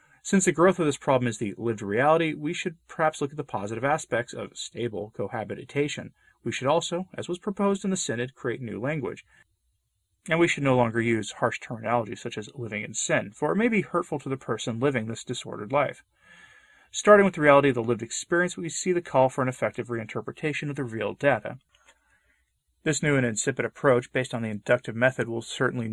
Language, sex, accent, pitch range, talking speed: English, male, American, 115-155 Hz, 210 wpm